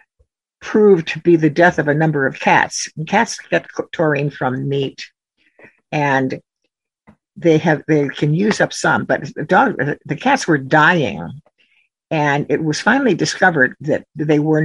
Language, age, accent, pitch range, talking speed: English, 60-79, American, 140-170 Hz, 155 wpm